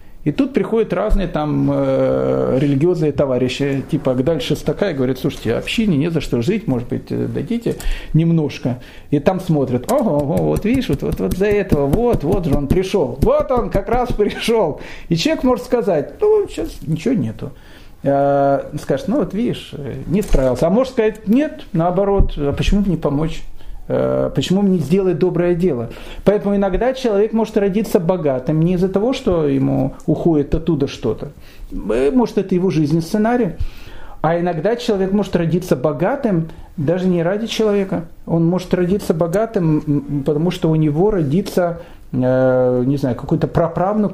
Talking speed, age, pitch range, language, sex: 160 wpm, 40-59, 145-210 Hz, Russian, male